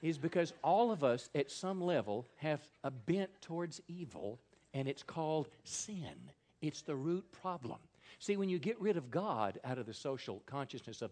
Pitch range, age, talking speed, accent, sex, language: 120-175 Hz, 50-69, 185 wpm, American, male, English